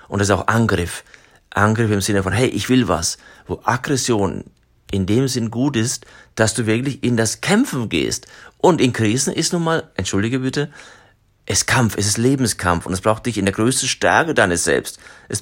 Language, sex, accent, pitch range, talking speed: German, male, German, 95-130 Hz, 200 wpm